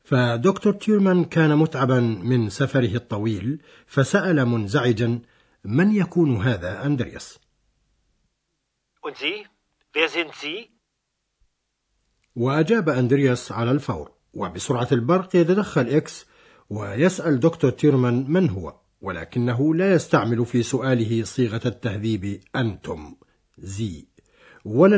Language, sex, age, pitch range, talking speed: Arabic, male, 60-79, 115-155 Hz, 85 wpm